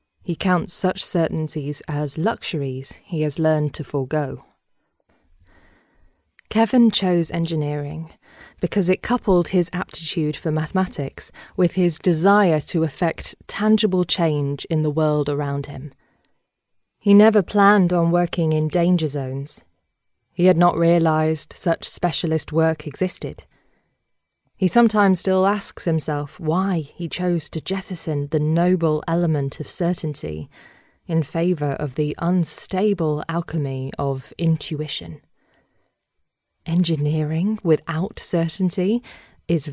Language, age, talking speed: English, 20-39, 115 wpm